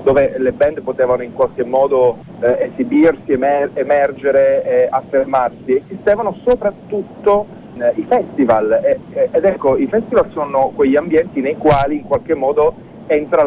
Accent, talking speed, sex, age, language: native, 145 wpm, male, 40-59, Italian